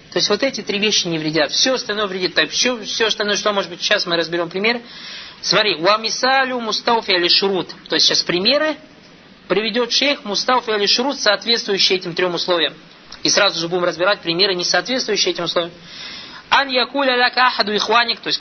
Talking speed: 180 wpm